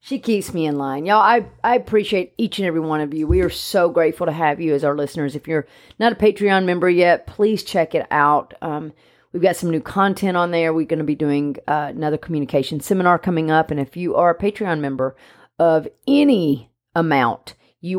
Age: 40-59